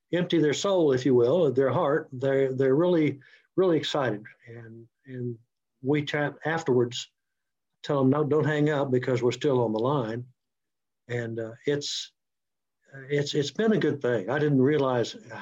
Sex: male